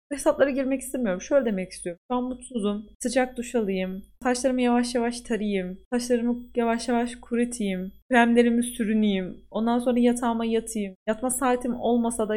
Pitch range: 190-245 Hz